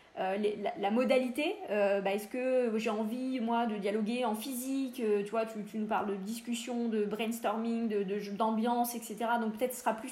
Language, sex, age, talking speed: French, female, 20-39, 220 wpm